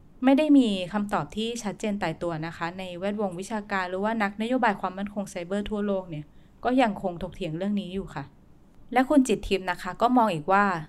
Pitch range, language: 180-220 Hz, Thai